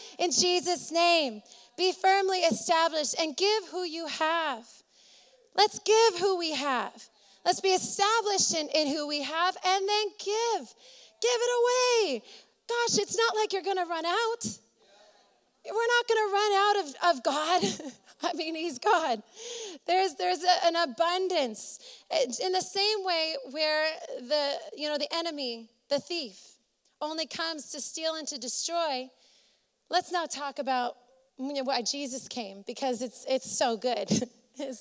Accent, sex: American, female